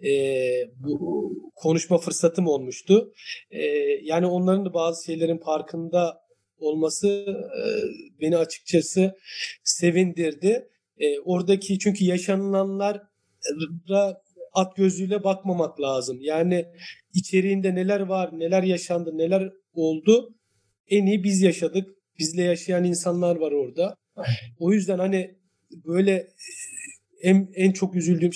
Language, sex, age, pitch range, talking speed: Turkish, male, 40-59, 165-195 Hz, 105 wpm